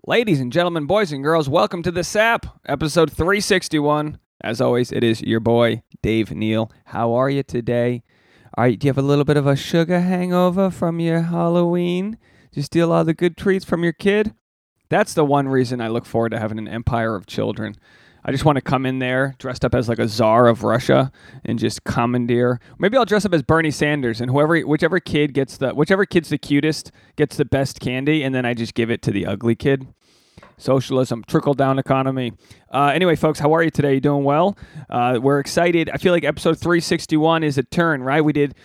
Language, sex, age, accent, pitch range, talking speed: English, male, 30-49, American, 125-160 Hz, 210 wpm